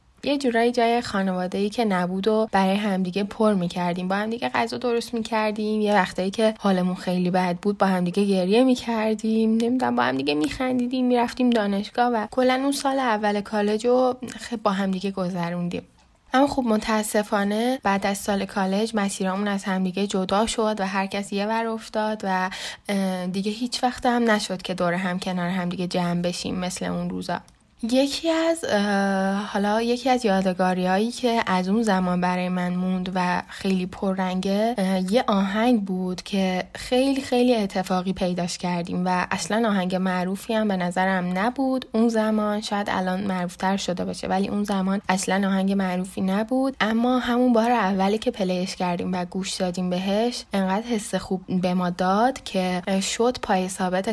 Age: 10-29